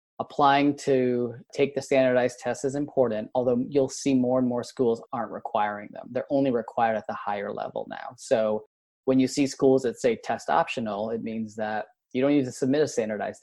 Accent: American